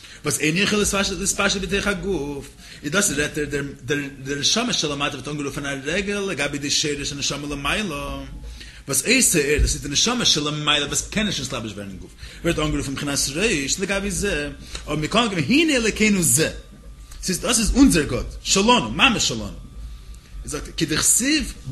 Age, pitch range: 30-49, 140-195 Hz